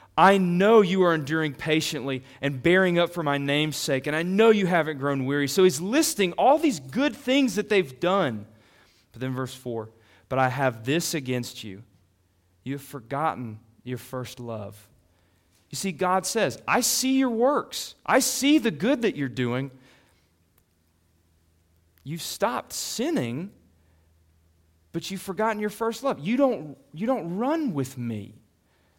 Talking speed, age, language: 155 wpm, 40-59, English